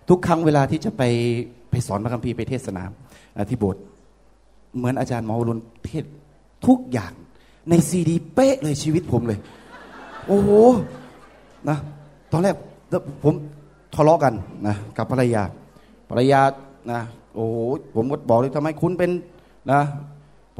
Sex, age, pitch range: male, 20-39, 115-160 Hz